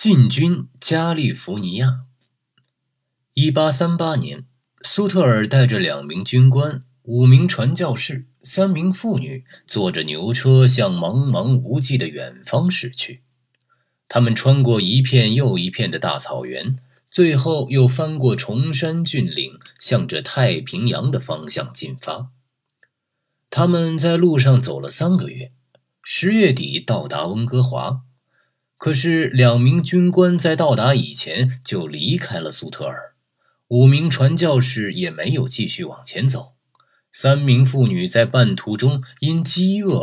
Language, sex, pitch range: Chinese, male, 125-160 Hz